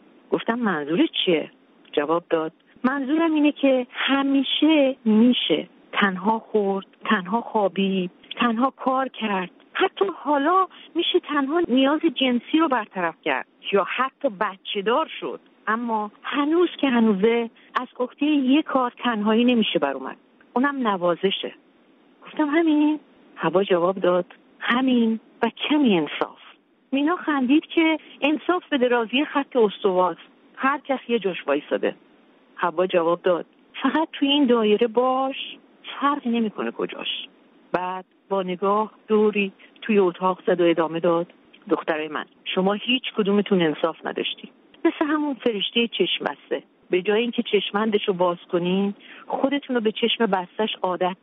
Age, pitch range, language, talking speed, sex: 50-69, 200-285 Hz, Persian, 130 wpm, female